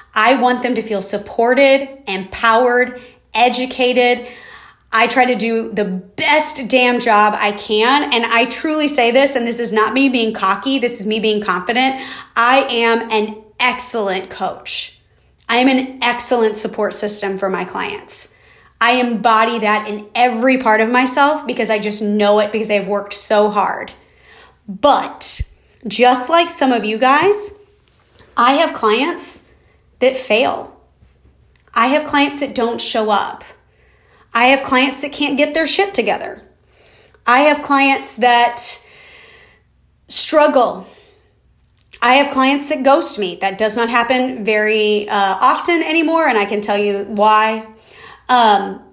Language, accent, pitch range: English, American, 215-270 Hz